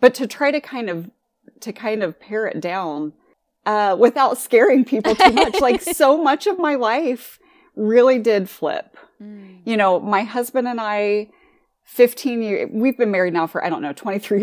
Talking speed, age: 185 wpm, 30-49